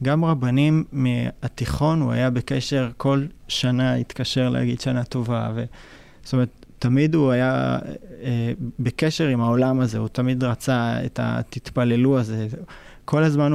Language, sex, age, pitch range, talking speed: Hebrew, male, 20-39, 120-135 Hz, 135 wpm